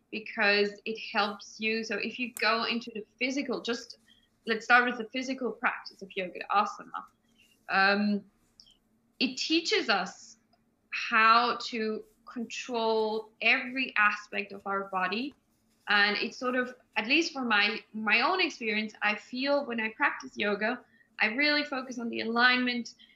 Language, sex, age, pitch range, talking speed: English, female, 20-39, 210-250 Hz, 145 wpm